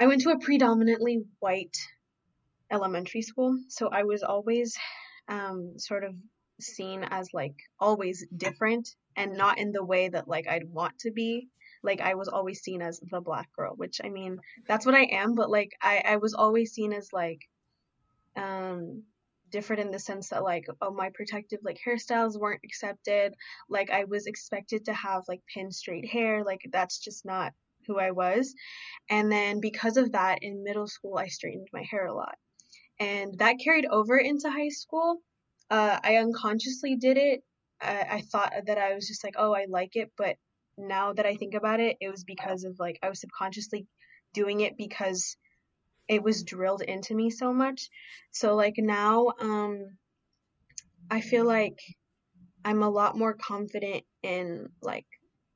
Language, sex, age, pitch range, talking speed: English, female, 10-29, 190-225 Hz, 175 wpm